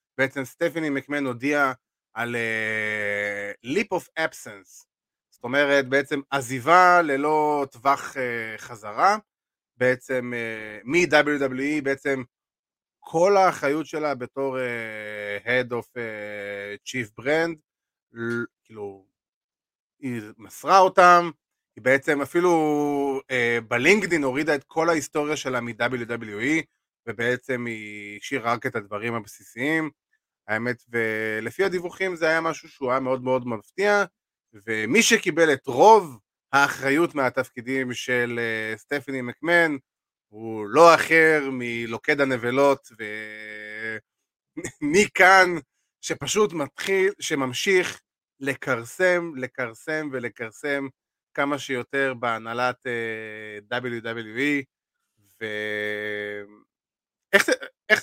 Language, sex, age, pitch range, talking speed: Hebrew, male, 30-49, 115-150 Hz, 45 wpm